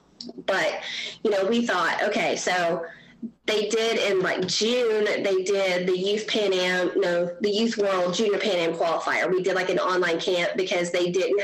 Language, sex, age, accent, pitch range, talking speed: English, female, 20-39, American, 185-225 Hz, 185 wpm